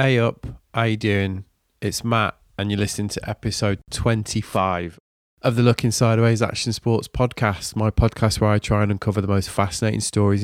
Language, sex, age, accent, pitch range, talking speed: English, male, 20-39, British, 95-110 Hz, 180 wpm